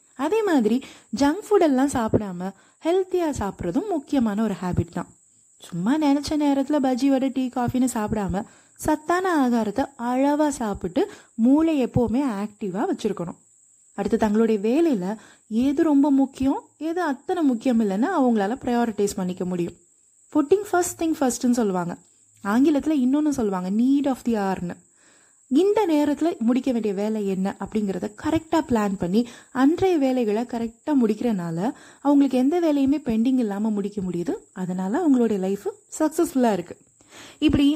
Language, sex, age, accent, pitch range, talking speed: Tamil, female, 20-39, native, 220-300 Hz, 120 wpm